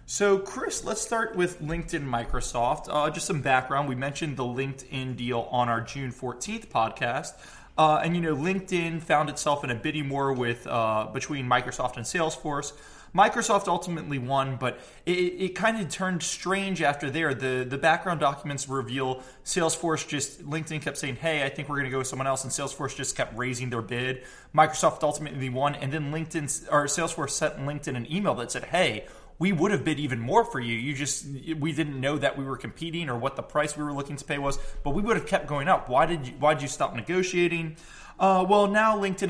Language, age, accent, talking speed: English, 20-39, American, 210 wpm